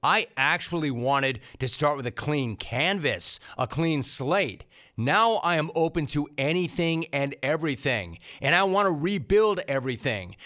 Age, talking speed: 40-59, 150 wpm